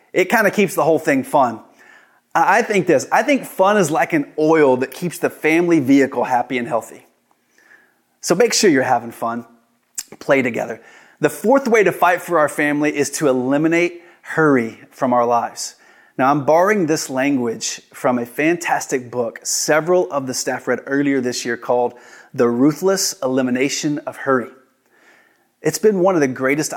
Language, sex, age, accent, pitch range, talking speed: English, male, 30-49, American, 130-175 Hz, 175 wpm